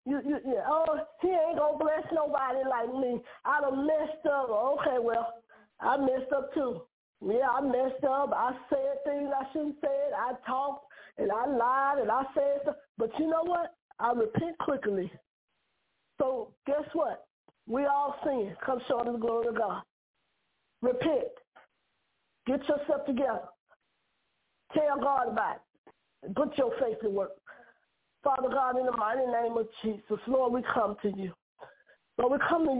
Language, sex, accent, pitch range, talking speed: English, female, American, 235-295 Hz, 170 wpm